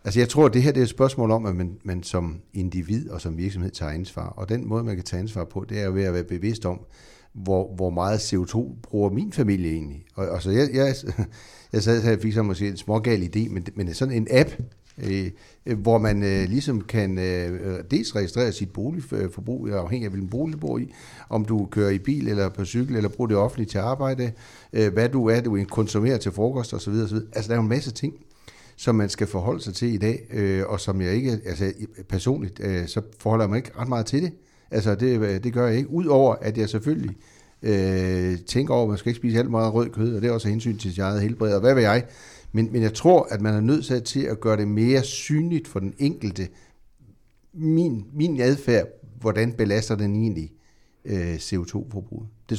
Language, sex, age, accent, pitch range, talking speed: Danish, male, 60-79, native, 100-120 Hz, 230 wpm